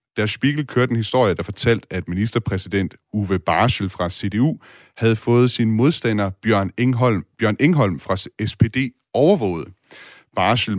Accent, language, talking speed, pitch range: native, Danish, 135 wpm, 95-120 Hz